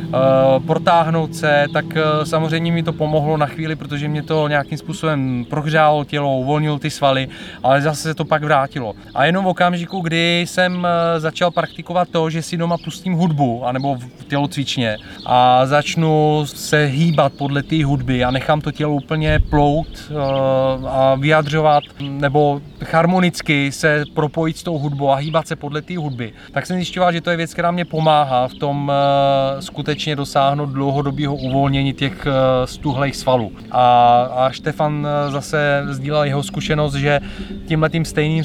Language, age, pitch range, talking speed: Czech, 30-49, 140-155 Hz, 155 wpm